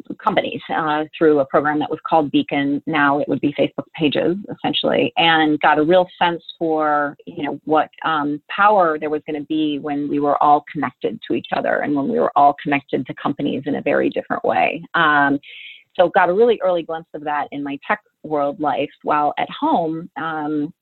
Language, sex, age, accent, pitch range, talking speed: English, female, 30-49, American, 150-190 Hz, 205 wpm